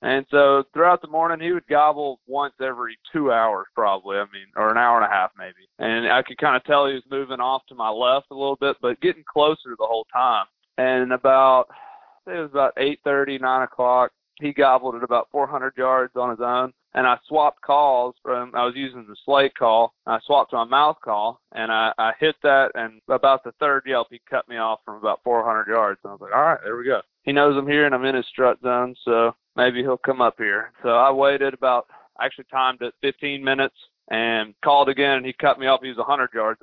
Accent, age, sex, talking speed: American, 30-49, male, 240 wpm